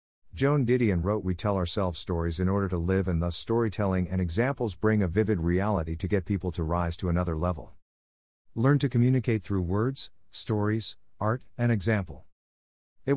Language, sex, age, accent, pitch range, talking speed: English, male, 50-69, American, 90-115 Hz, 175 wpm